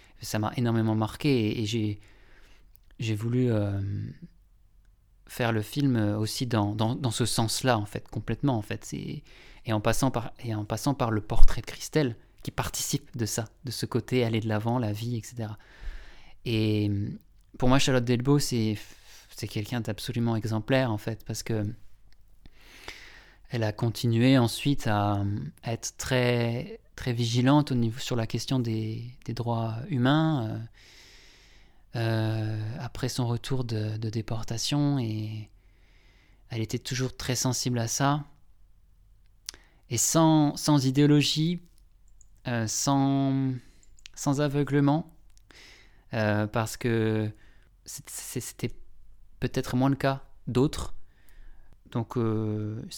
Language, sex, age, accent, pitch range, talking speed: French, male, 20-39, French, 105-130 Hz, 135 wpm